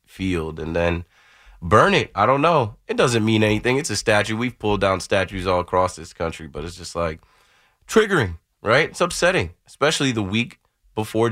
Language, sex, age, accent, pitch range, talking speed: English, male, 20-39, American, 95-145 Hz, 185 wpm